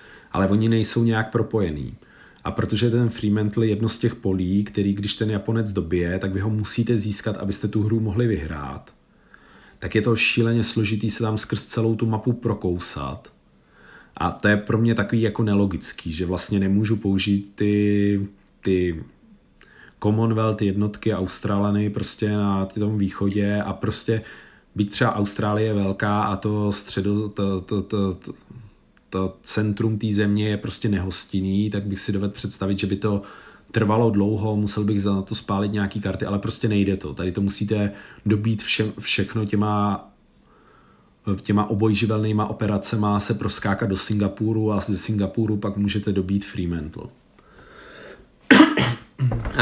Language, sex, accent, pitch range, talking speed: Czech, male, native, 100-110 Hz, 150 wpm